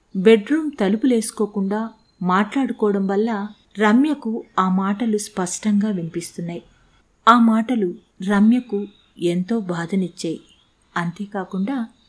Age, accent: 50-69, native